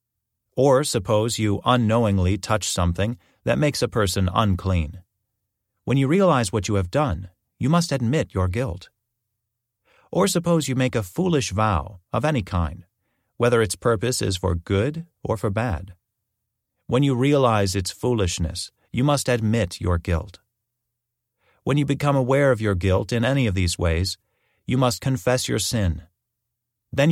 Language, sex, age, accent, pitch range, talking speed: English, male, 40-59, American, 95-125 Hz, 155 wpm